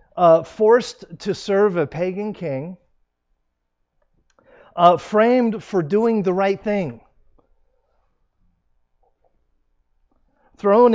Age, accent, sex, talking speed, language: 50-69, American, male, 80 wpm, English